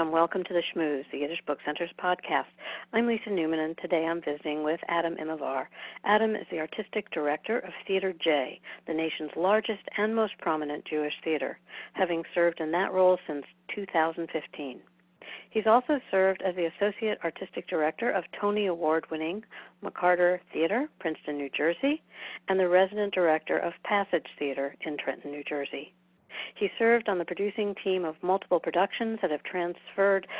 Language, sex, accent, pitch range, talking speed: English, female, American, 160-200 Hz, 160 wpm